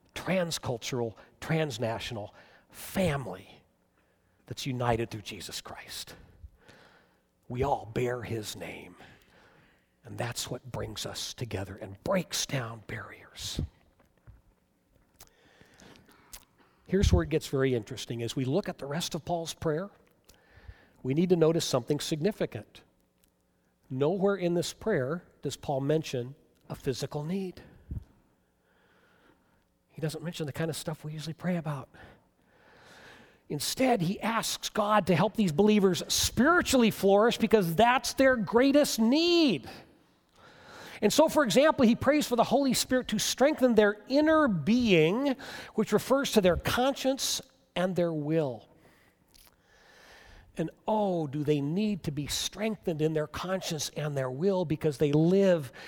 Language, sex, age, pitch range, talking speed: English, male, 40-59, 125-205 Hz, 130 wpm